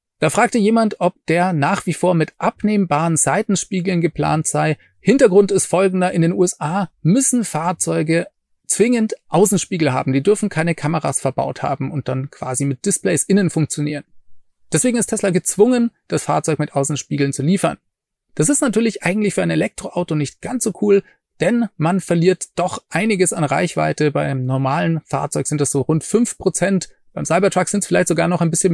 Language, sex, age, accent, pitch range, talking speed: German, male, 30-49, German, 150-205 Hz, 175 wpm